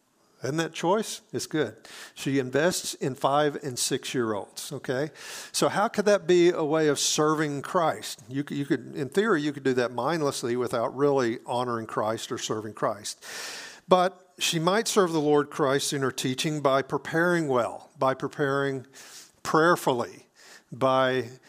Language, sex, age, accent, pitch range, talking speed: English, male, 50-69, American, 130-160 Hz, 165 wpm